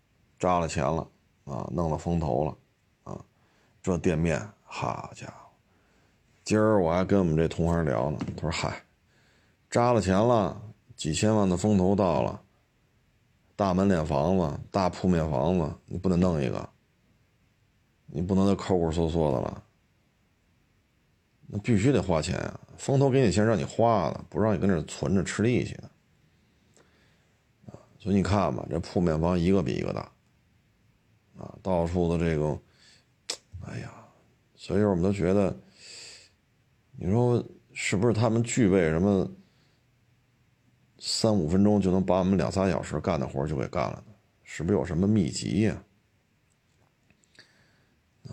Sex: male